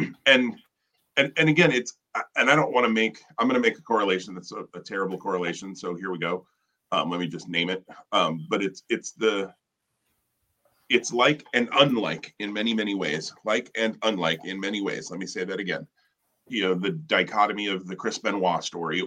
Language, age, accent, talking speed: English, 30-49, American, 205 wpm